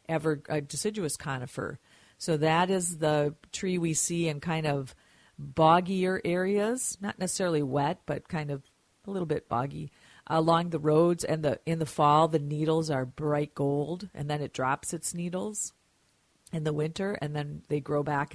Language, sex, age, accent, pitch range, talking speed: English, female, 40-59, American, 145-175 Hz, 175 wpm